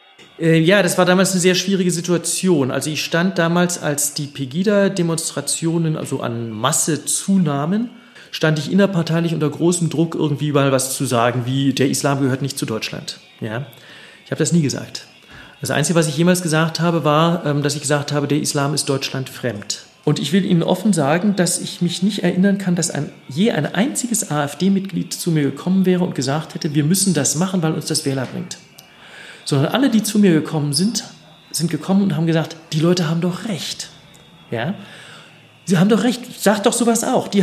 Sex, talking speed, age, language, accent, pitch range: male, 195 wpm, 40-59, German, German, 145-185 Hz